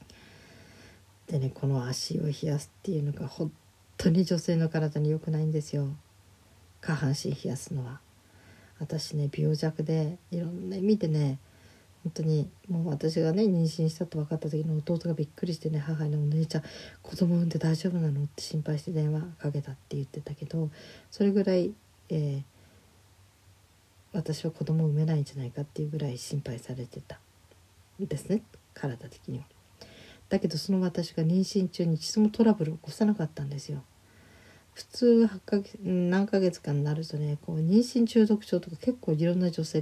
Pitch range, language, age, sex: 130-170 Hz, Japanese, 40-59, female